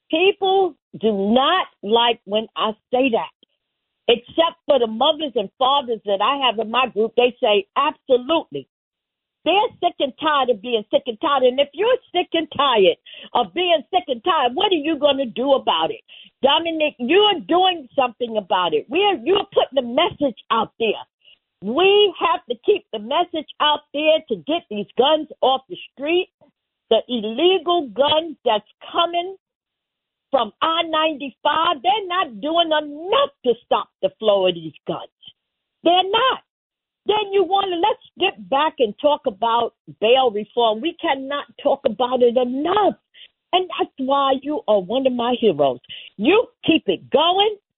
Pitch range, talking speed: 240-345 Hz, 165 wpm